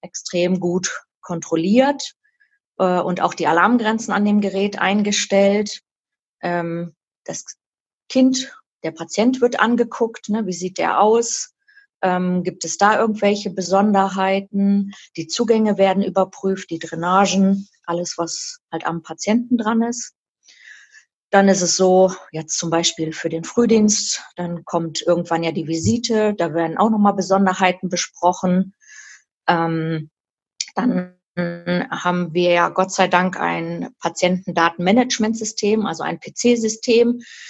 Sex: female